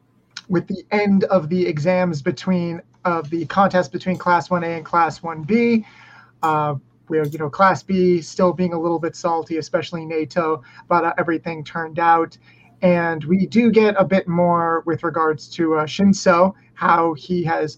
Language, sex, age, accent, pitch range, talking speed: English, male, 30-49, American, 160-185 Hz, 170 wpm